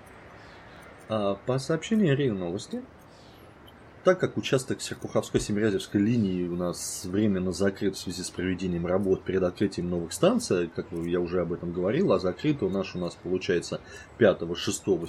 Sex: male